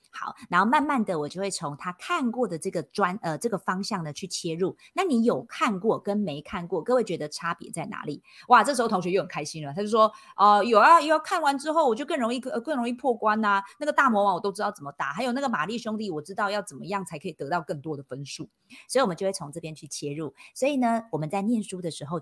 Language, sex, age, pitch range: Chinese, female, 30-49, 165-230 Hz